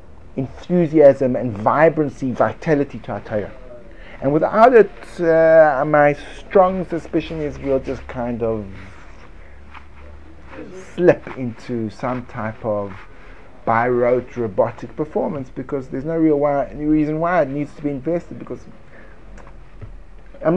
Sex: male